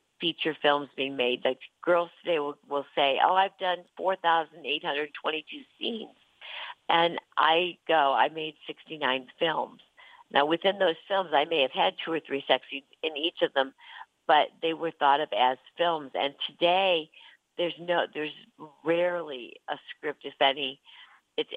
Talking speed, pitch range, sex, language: 155 wpm, 145-180 Hz, female, English